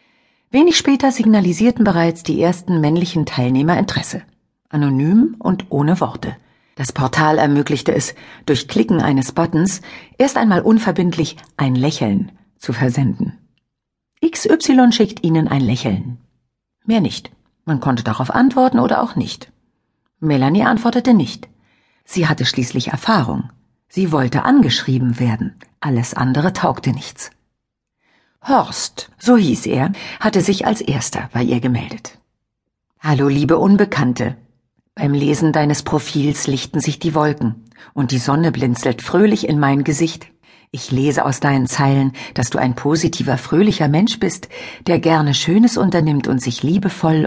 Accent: German